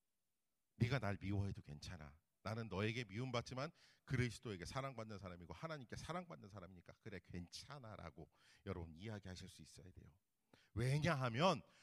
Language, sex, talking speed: English, male, 105 wpm